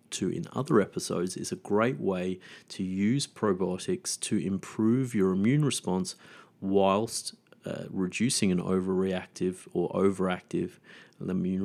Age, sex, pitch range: 30-49, male, 90-110 Hz